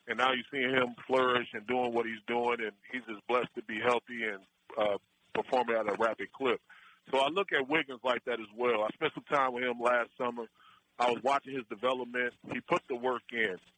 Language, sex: English, male